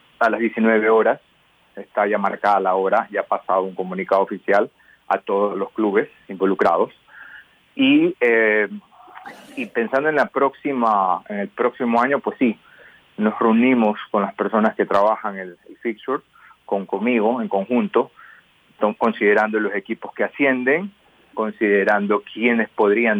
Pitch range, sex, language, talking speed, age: 100-120 Hz, male, Spanish, 140 wpm, 30-49